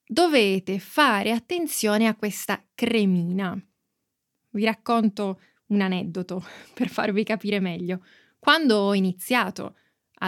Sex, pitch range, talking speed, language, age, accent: female, 195-240 Hz, 105 wpm, Italian, 20-39, native